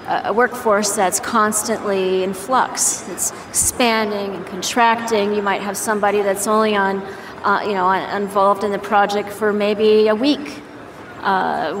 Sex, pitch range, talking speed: female, 200-235 Hz, 145 wpm